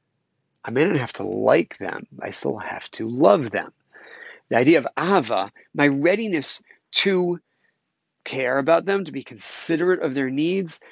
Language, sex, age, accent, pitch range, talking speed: English, male, 40-59, American, 140-190 Hz, 160 wpm